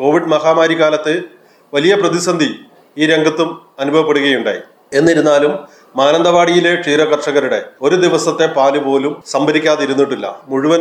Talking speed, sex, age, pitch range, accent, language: 90 wpm, male, 30-49, 135-155 Hz, native, Malayalam